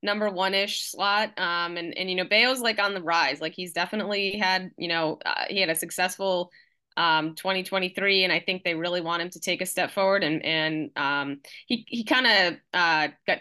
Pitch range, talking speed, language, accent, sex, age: 170-205 Hz, 210 wpm, English, American, female, 20-39